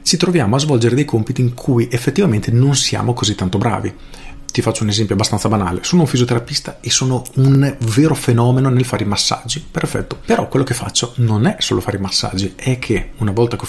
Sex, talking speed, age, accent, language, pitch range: male, 215 wpm, 40-59, native, Italian, 105-125 Hz